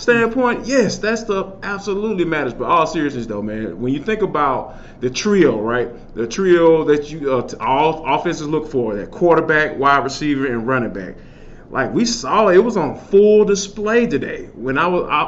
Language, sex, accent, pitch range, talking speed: English, male, American, 135-195 Hz, 170 wpm